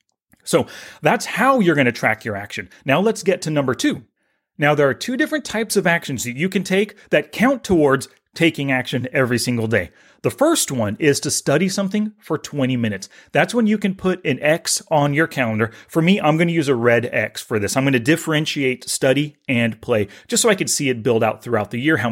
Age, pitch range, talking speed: 30-49, 130-190 Hz, 230 wpm